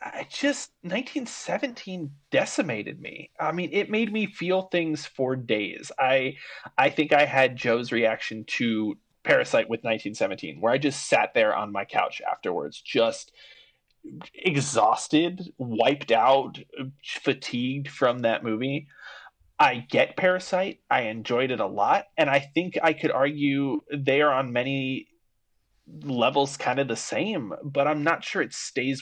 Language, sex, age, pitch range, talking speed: English, male, 30-49, 115-160 Hz, 145 wpm